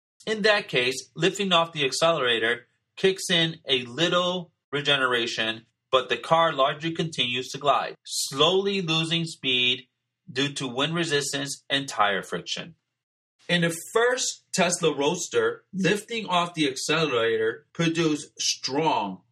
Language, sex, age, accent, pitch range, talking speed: English, male, 30-49, American, 130-180 Hz, 125 wpm